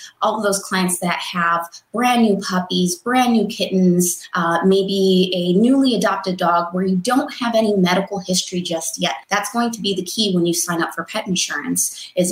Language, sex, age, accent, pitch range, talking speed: English, female, 20-39, American, 175-215 Hz, 195 wpm